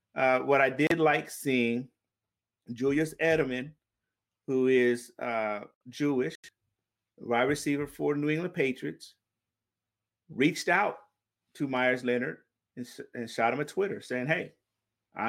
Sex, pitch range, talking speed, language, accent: male, 120-145 Hz, 125 wpm, English, American